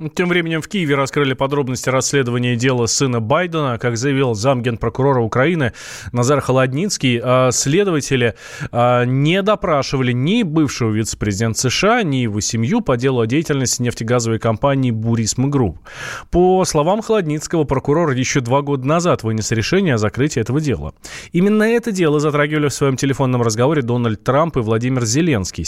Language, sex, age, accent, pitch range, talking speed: Russian, male, 20-39, native, 115-145 Hz, 145 wpm